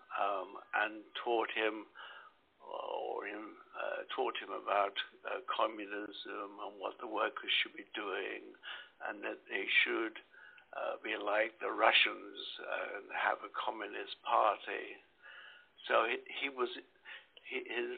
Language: English